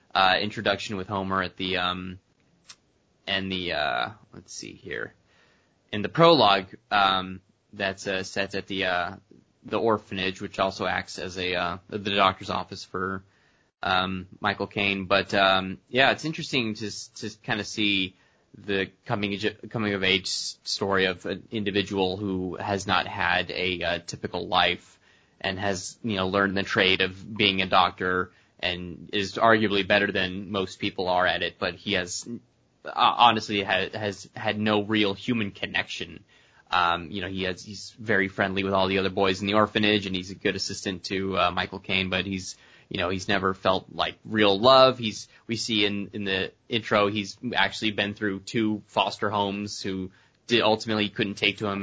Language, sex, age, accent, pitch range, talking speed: English, male, 20-39, American, 95-105 Hz, 180 wpm